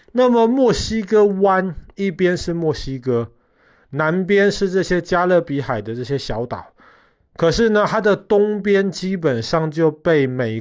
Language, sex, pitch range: Chinese, male, 125-180 Hz